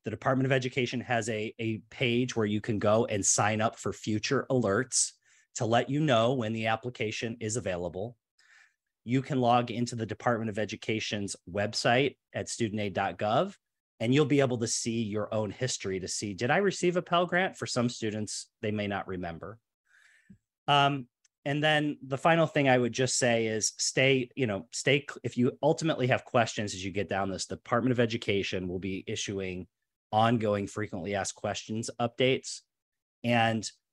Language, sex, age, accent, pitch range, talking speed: English, male, 30-49, American, 105-130 Hz, 175 wpm